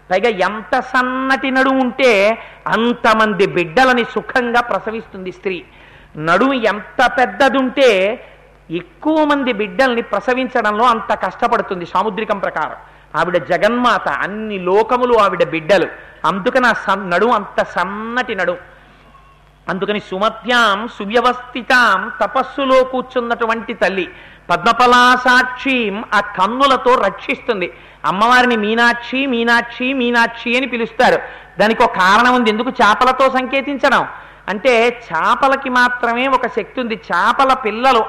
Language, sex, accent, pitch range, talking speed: Telugu, male, native, 210-255 Hz, 105 wpm